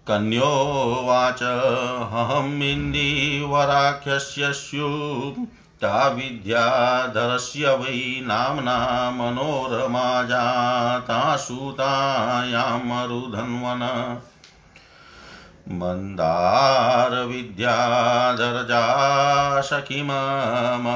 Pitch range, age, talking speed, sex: 120-140 Hz, 50-69, 40 wpm, male